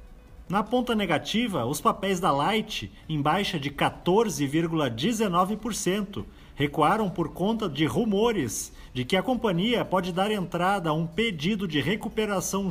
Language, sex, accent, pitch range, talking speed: Portuguese, male, Brazilian, 155-215 Hz, 130 wpm